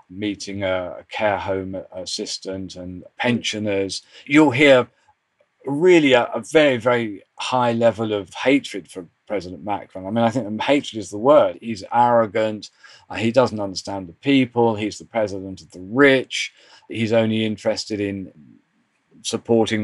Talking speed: 150 wpm